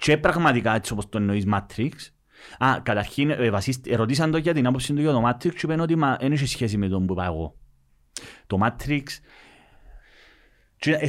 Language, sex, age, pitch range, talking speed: Greek, male, 30-49, 100-145 Hz, 105 wpm